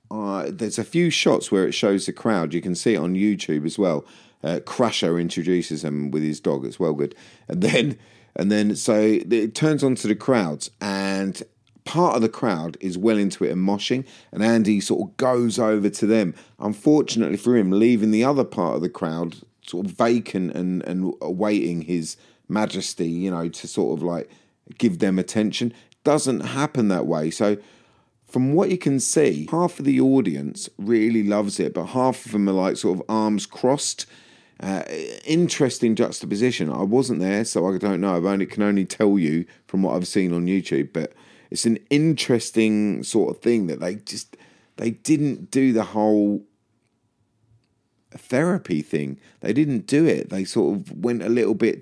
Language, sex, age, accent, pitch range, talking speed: English, male, 40-59, British, 95-120 Hz, 190 wpm